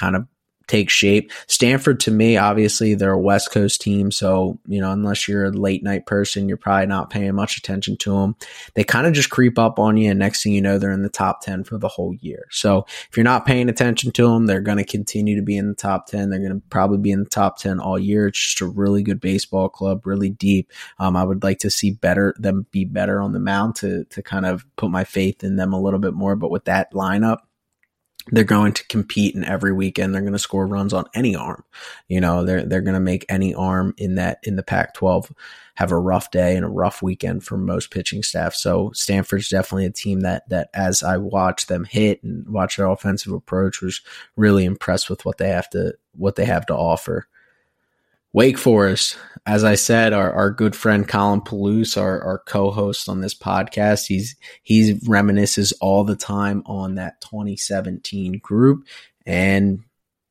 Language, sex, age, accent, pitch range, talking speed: English, male, 20-39, American, 95-105 Hz, 220 wpm